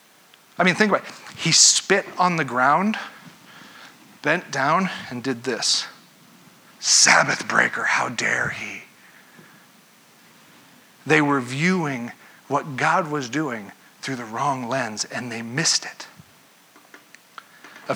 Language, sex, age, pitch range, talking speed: English, male, 40-59, 140-190 Hz, 120 wpm